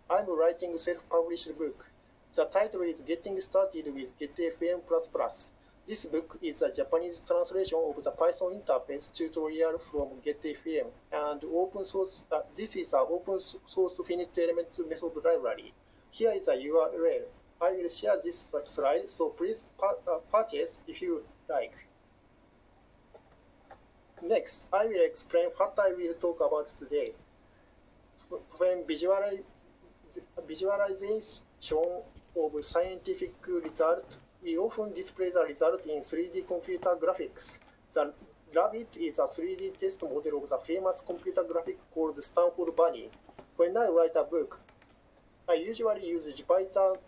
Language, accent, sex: Japanese, native, male